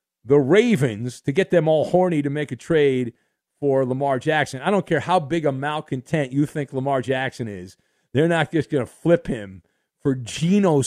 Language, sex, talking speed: English, male, 195 wpm